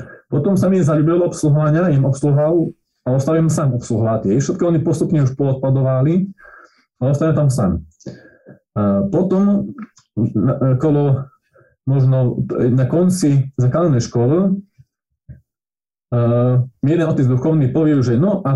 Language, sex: Slovak, male